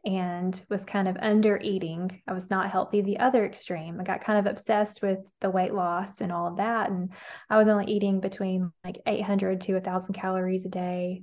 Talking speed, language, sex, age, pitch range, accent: 220 wpm, English, female, 20-39, 185-205 Hz, American